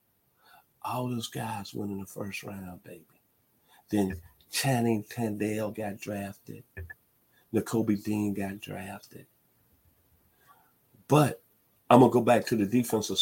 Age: 50-69